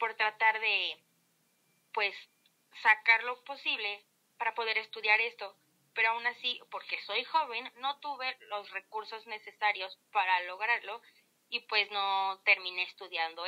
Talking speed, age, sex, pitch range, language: 130 wpm, 20-39, female, 200-245 Hz, Spanish